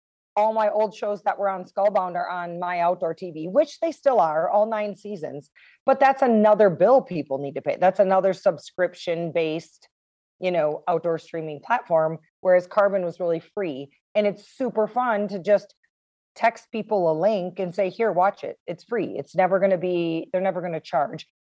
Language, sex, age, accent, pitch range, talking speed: English, female, 30-49, American, 170-210 Hz, 195 wpm